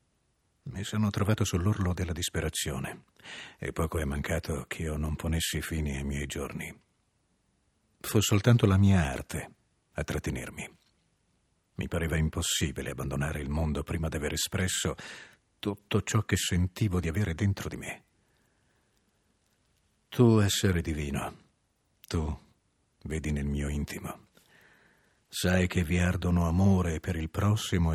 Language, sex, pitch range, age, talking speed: Italian, male, 80-105 Hz, 50-69, 130 wpm